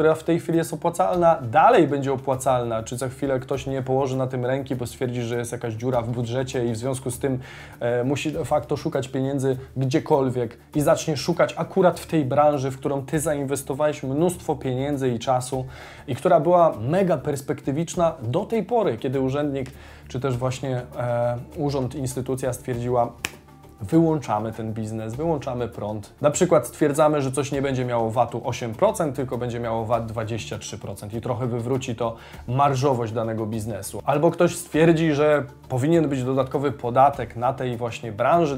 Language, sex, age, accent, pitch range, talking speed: Polish, male, 20-39, native, 120-155 Hz, 165 wpm